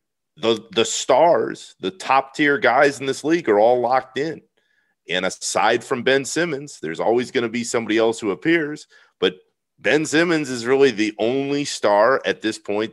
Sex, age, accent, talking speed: male, 40-59, American, 175 wpm